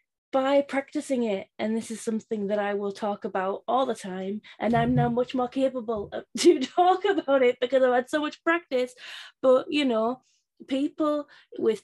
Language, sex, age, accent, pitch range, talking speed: English, female, 20-39, British, 195-255 Hz, 180 wpm